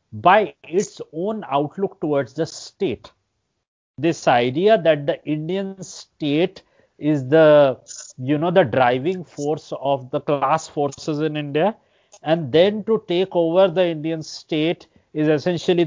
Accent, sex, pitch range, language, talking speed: Indian, male, 145-180 Hz, English, 135 wpm